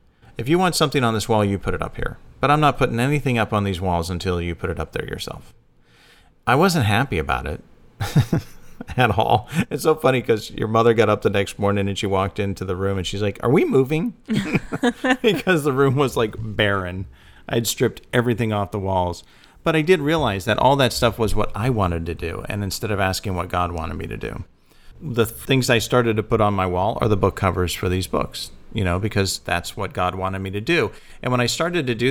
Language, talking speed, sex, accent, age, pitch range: English, 235 wpm, male, American, 40-59, 95-125 Hz